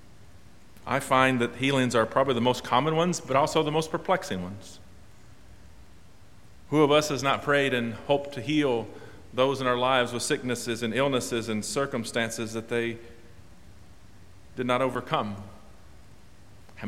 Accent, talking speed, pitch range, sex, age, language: American, 150 wpm, 100-145 Hz, male, 40-59, English